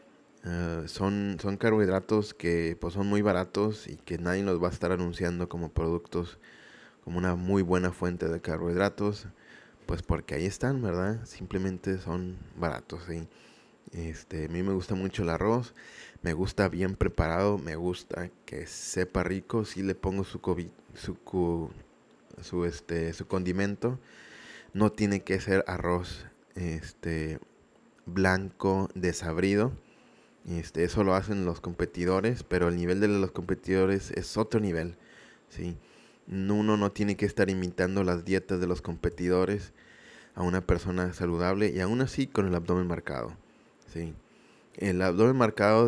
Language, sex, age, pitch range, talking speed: Spanish, male, 20-39, 90-100 Hz, 150 wpm